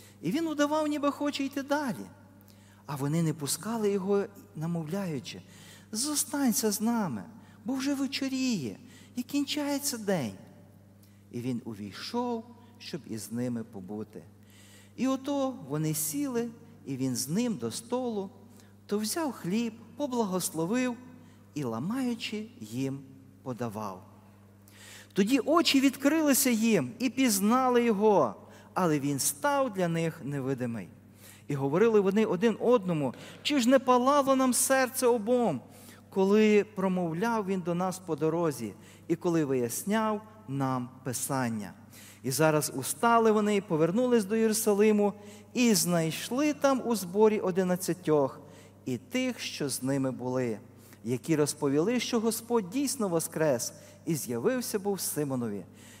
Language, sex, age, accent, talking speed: Ukrainian, male, 40-59, native, 120 wpm